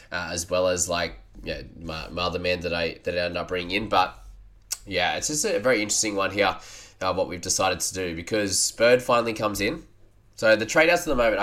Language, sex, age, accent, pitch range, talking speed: English, male, 20-39, Australian, 95-115 Hz, 230 wpm